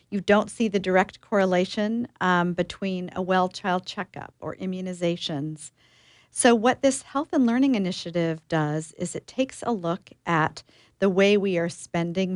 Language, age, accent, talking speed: English, 50-69, American, 155 wpm